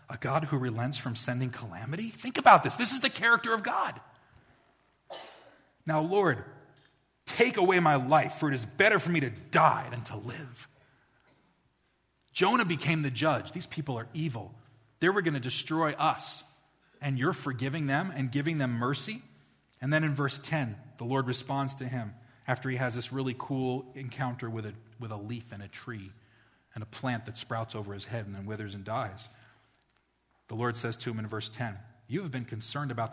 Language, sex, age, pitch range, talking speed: English, male, 30-49, 120-155 Hz, 190 wpm